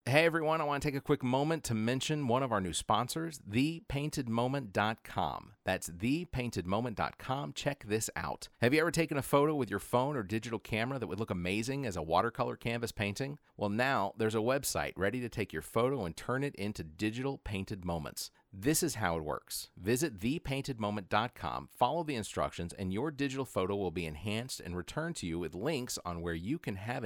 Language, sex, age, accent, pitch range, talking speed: English, male, 40-59, American, 95-130 Hz, 195 wpm